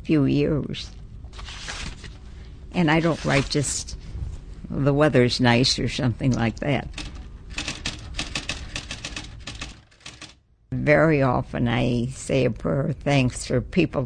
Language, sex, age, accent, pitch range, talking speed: English, female, 60-79, American, 110-150 Hz, 100 wpm